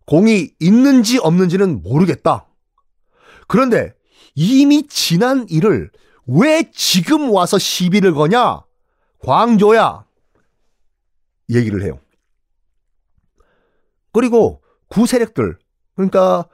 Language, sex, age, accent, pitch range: Korean, male, 40-59, native, 150-245 Hz